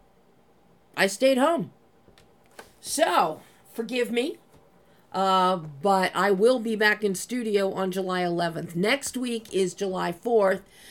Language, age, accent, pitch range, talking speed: English, 50-69, American, 180-220 Hz, 120 wpm